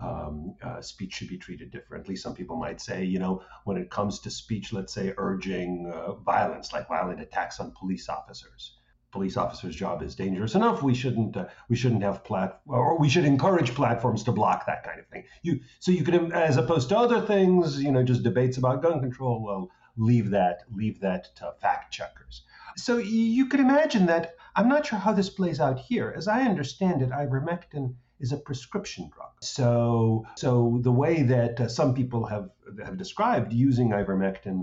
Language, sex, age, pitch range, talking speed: English, male, 50-69, 100-150 Hz, 195 wpm